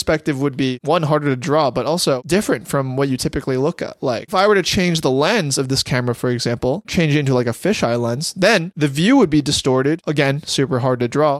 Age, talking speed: 20-39, 245 wpm